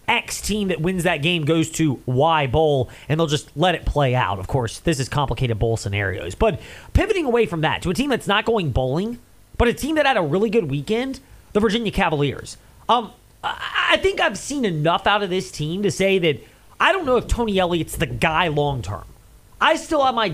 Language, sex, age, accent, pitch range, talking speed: English, male, 30-49, American, 140-210 Hz, 220 wpm